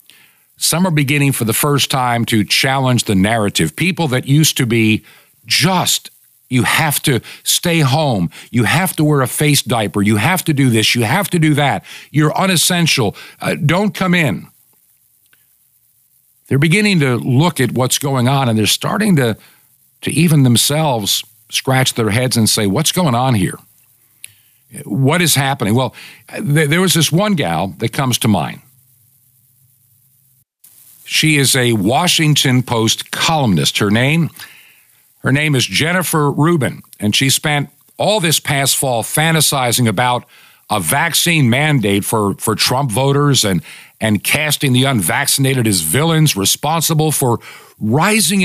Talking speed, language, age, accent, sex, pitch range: 150 wpm, English, 50-69, American, male, 115-150 Hz